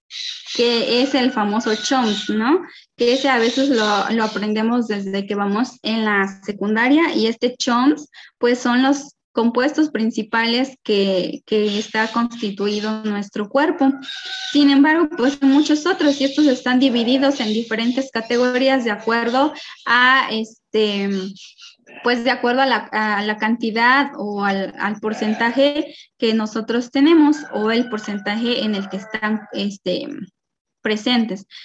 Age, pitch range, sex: 20-39, 220-275 Hz, female